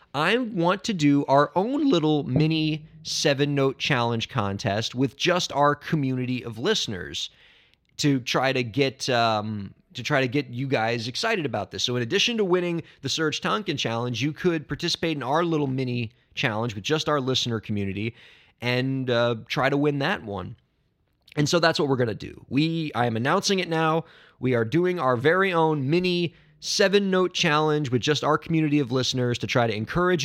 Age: 30-49